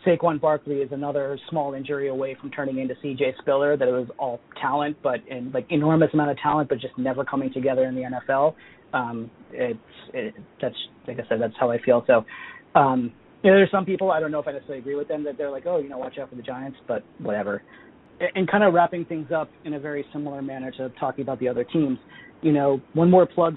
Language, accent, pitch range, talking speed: English, American, 135-160 Hz, 235 wpm